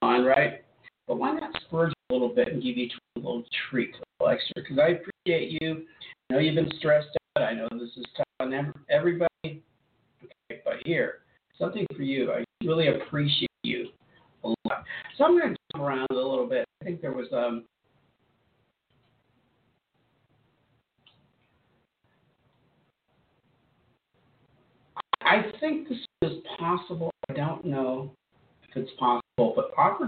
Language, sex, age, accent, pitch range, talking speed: English, male, 50-69, American, 125-175 Hz, 145 wpm